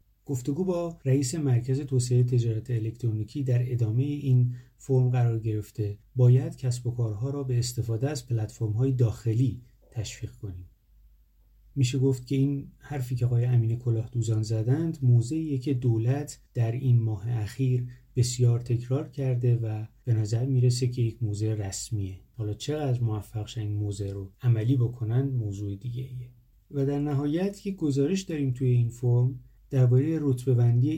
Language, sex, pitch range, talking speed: Persian, male, 110-135 Hz, 145 wpm